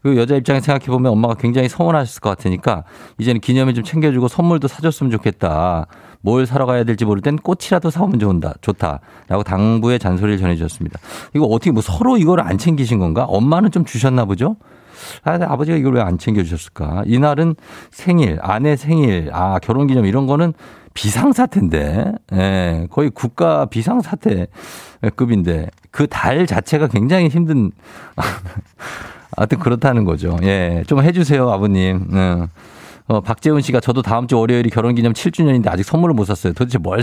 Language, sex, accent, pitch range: Korean, male, native, 100-145 Hz